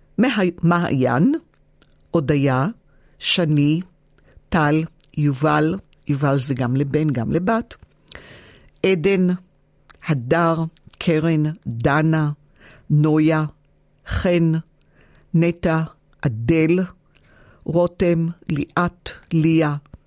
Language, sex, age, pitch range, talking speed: Hebrew, female, 50-69, 145-170 Hz, 70 wpm